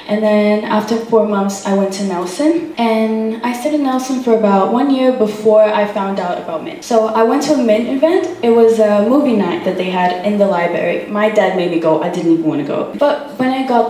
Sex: female